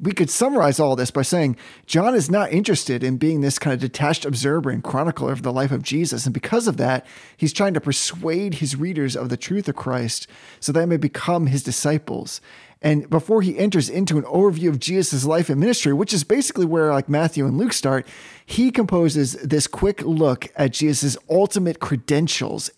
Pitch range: 145-195 Hz